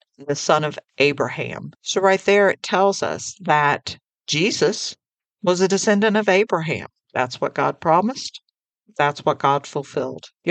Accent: American